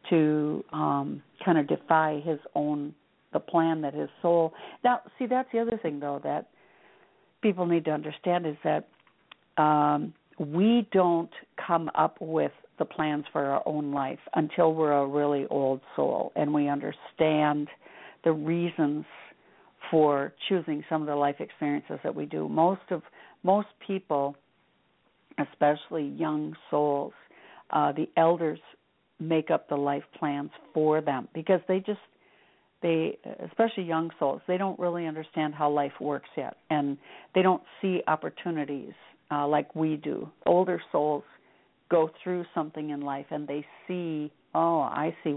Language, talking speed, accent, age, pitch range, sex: English, 150 wpm, American, 60-79, 145-175 Hz, female